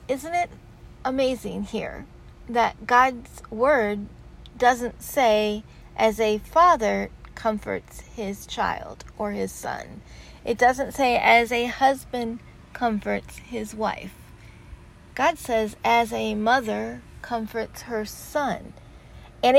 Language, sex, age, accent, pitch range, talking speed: English, female, 40-59, American, 205-245 Hz, 110 wpm